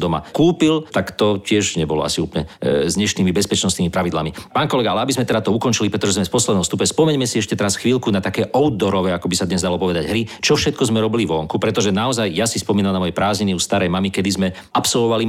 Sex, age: male, 50-69